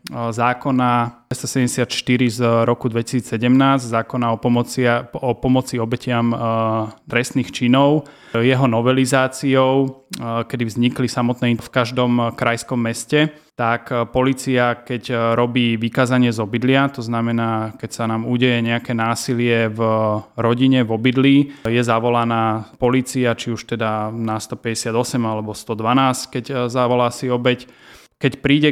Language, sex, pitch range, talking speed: Slovak, male, 115-130 Hz, 120 wpm